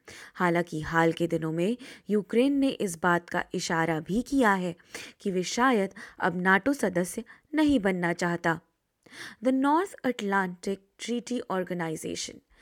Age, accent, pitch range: 20-39, native, 185-260 Hz